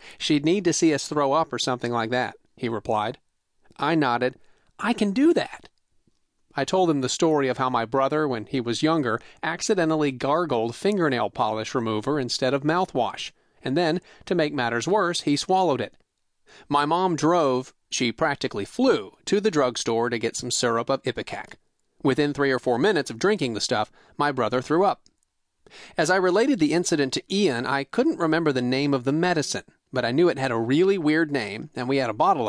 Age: 40-59